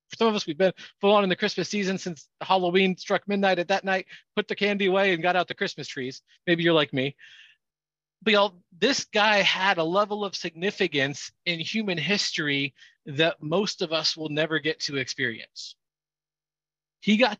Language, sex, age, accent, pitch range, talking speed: English, male, 40-59, American, 155-200 Hz, 190 wpm